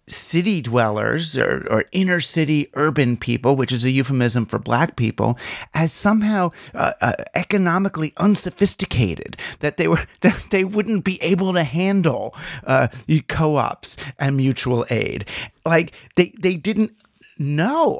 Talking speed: 135 wpm